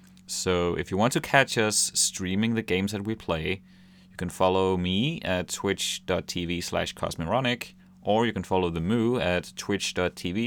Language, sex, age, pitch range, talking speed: English, male, 30-49, 90-105 Hz, 160 wpm